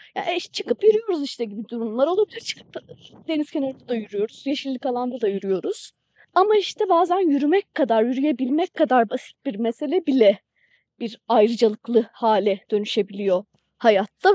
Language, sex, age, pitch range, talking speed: Turkish, female, 30-49, 230-330 Hz, 140 wpm